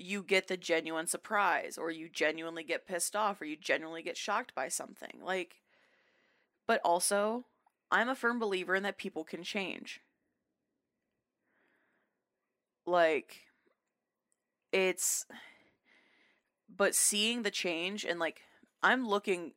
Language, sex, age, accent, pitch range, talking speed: English, female, 20-39, American, 165-195 Hz, 125 wpm